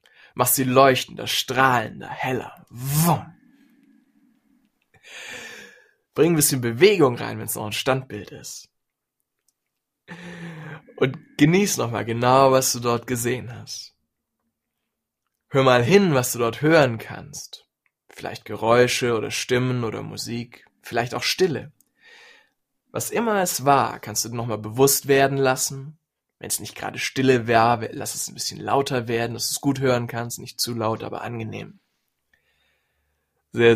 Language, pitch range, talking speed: German, 115-160 Hz, 135 wpm